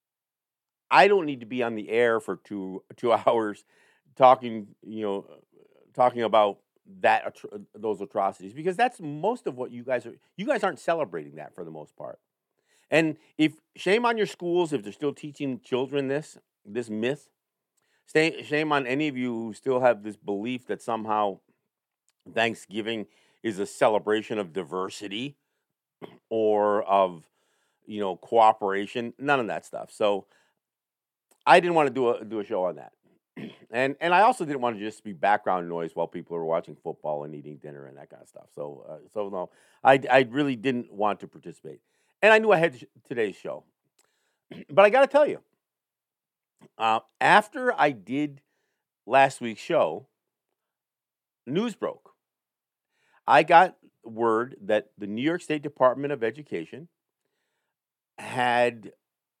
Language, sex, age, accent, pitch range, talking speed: English, male, 50-69, American, 105-145 Hz, 160 wpm